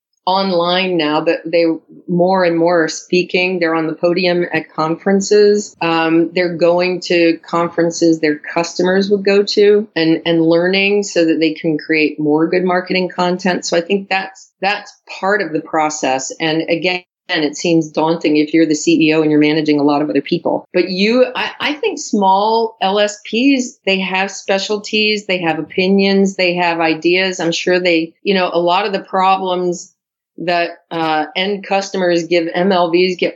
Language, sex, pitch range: English, female, 165-195 Hz